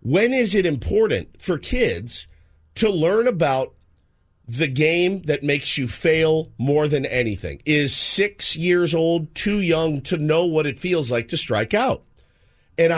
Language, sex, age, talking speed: English, male, 40-59, 155 wpm